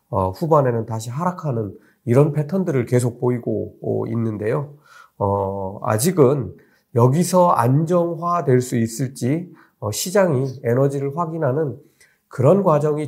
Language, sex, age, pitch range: Korean, male, 40-59, 110-155 Hz